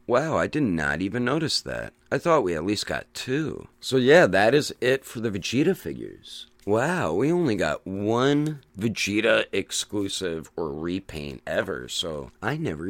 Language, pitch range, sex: English, 80-125 Hz, male